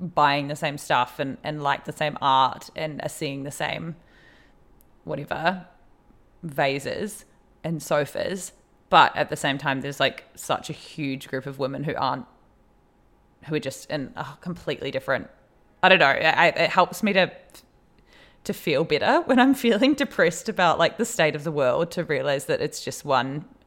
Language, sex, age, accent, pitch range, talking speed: English, female, 20-39, Australian, 150-185 Hz, 170 wpm